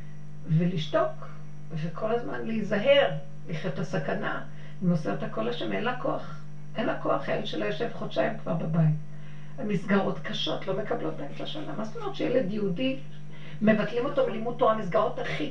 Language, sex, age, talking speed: Hebrew, female, 50-69, 145 wpm